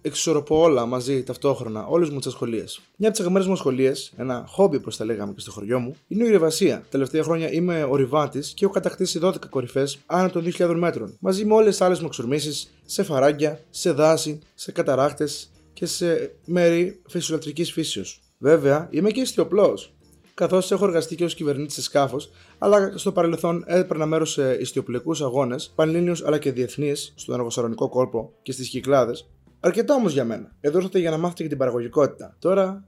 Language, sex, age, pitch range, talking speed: Greek, male, 20-39, 130-175 Hz, 170 wpm